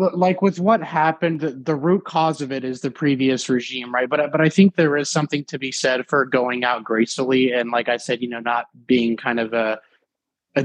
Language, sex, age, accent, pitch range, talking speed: English, male, 20-39, American, 125-150 Hz, 225 wpm